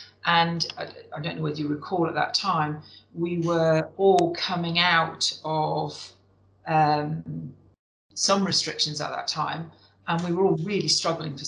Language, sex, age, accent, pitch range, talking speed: English, female, 40-59, British, 155-180 Hz, 150 wpm